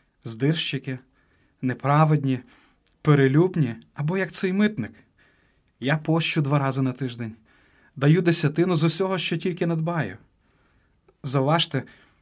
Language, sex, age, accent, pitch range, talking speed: Ukrainian, male, 30-49, native, 135-165 Hz, 105 wpm